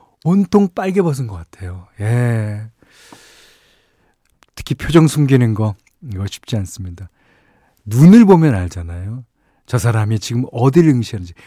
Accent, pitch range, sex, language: native, 105-150 Hz, male, Korean